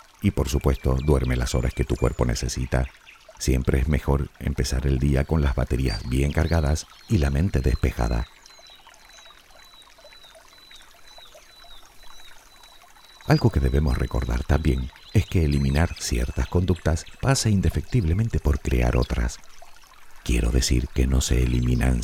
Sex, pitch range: male, 65-85 Hz